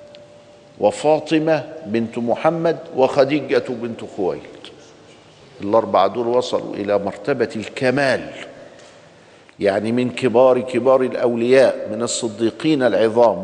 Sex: male